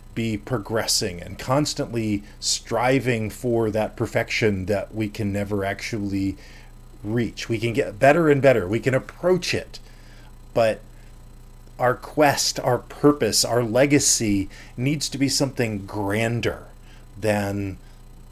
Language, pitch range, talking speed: English, 105-135 Hz, 120 wpm